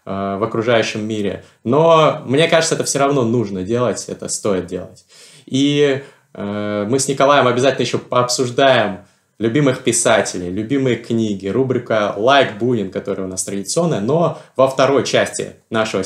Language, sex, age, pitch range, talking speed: Russian, male, 20-39, 110-150 Hz, 145 wpm